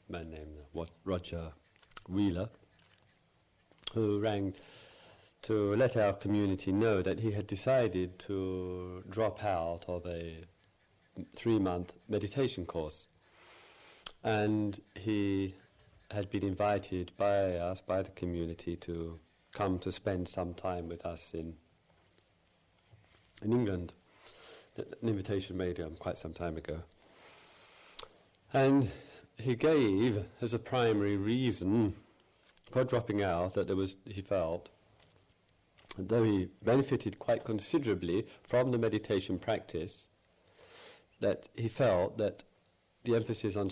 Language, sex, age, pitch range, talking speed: English, male, 40-59, 90-110 Hz, 115 wpm